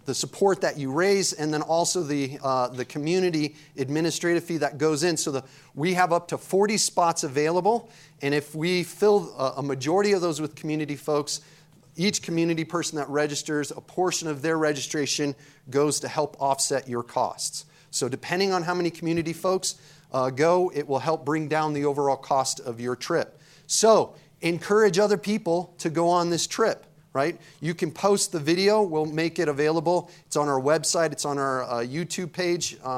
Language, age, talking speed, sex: English, 30-49, 185 wpm, male